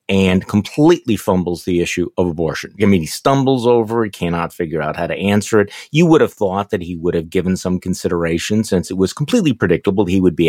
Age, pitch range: 50-69, 95-145 Hz